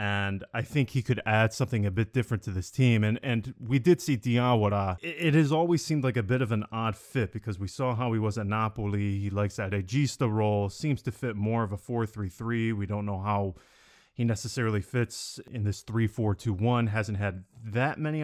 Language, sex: English, male